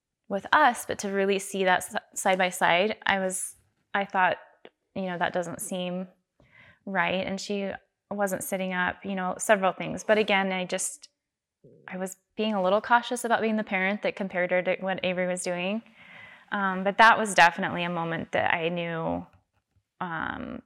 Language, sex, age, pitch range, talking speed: English, female, 20-39, 175-195 Hz, 180 wpm